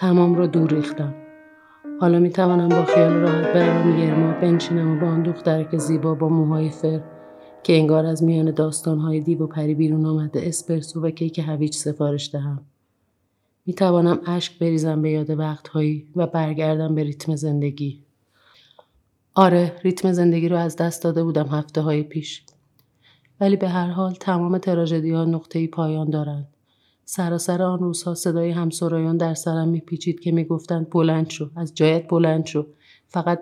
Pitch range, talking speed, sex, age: 150-170 Hz, 150 wpm, female, 30-49